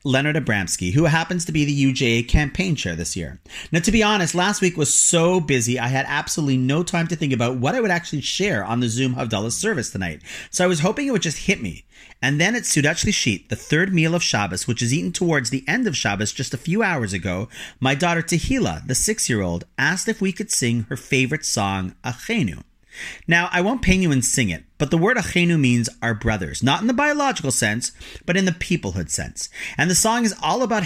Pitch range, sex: 120-175 Hz, male